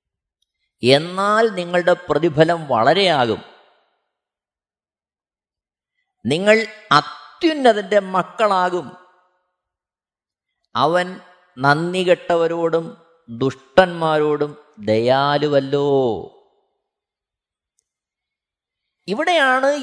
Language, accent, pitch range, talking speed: Malayalam, native, 175-255 Hz, 35 wpm